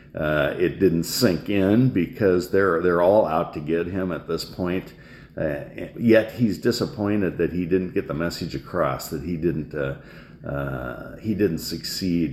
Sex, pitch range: male, 85-110 Hz